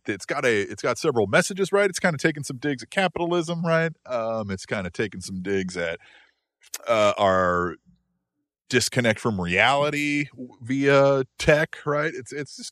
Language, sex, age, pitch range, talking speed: English, male, 30-49, 100-165 Hz, 170 wpm